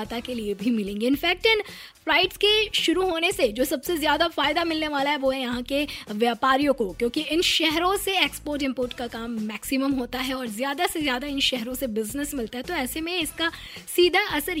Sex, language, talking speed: female, Hindi, 215 wpm